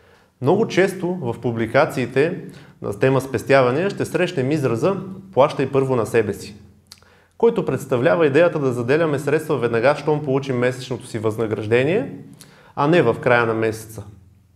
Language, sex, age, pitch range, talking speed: Bulgarian, male, 20-39, 115-155 Hz, 135 wpm